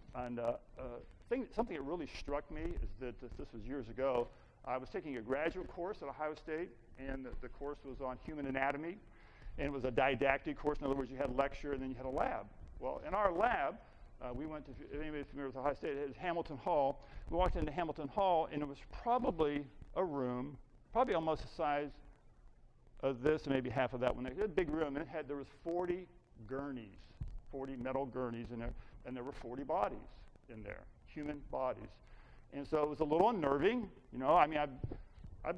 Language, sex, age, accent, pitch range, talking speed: English, male, 50-69, American, 120-145 Hz, 220 wpm